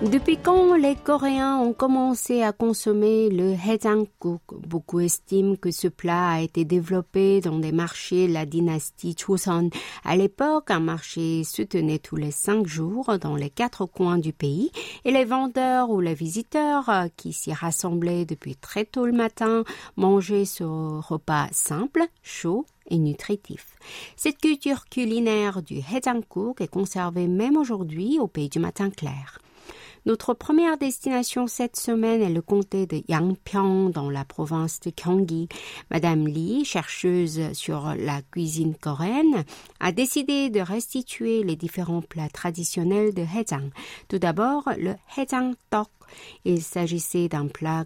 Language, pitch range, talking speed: French, 165-230 Hz, 145 wpm